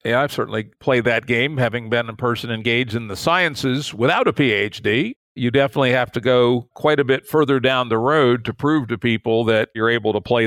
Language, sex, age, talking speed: English, male, 50-69, 220 wpm